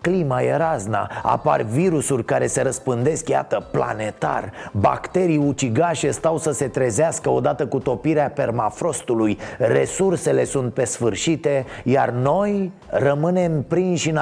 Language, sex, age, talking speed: Romanian, male, 30-49, 120 wpm